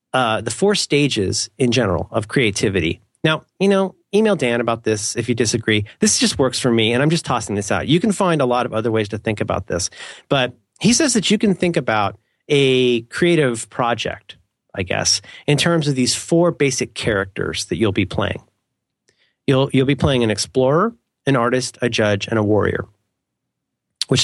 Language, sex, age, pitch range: English, male, 30-49, 115-165 Hz